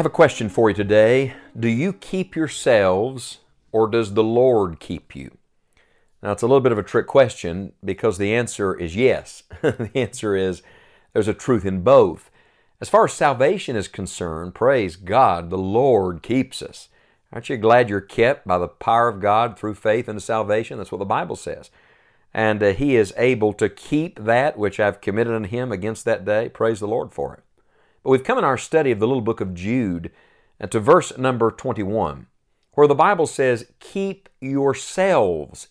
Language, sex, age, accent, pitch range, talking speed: English, male, 50-69, American, 95-125 Hz, 190 wpm